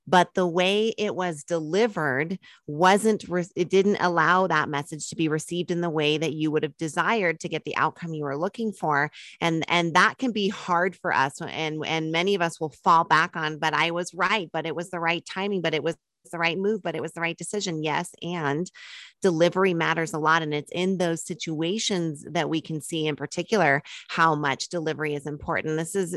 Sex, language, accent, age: female, English, American, 30-49